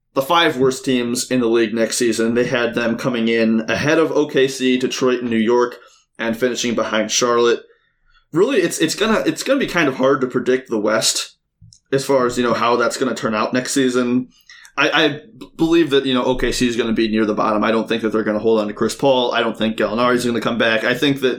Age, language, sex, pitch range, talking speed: 20-39, English, male, 115-135 Hz, 240 wpm